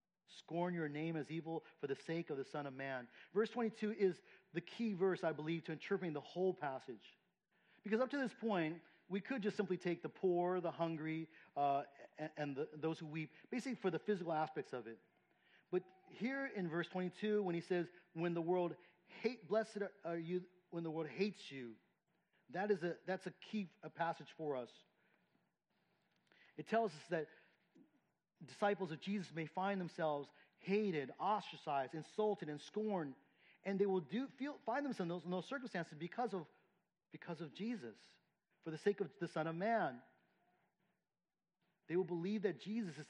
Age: 40-59